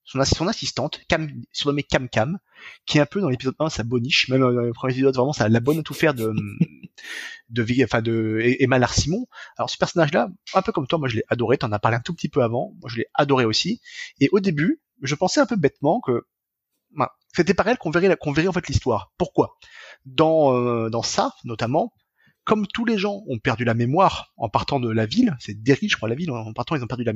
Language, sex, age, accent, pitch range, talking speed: French, male, 30-49, French, 125-190 Hz, 245 wpm